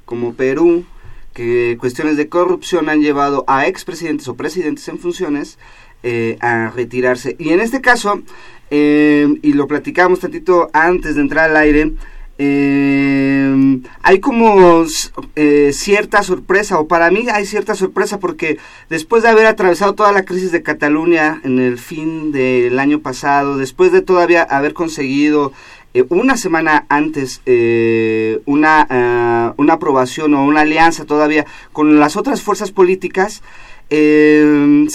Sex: male